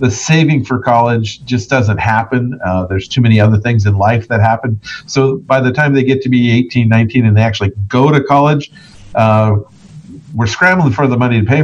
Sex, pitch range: male, 110-140 Hz